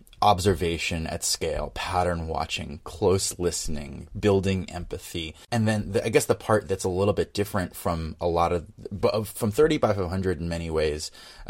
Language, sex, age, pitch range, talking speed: English, male, 30-49, 80-100 Hz, 160 wpm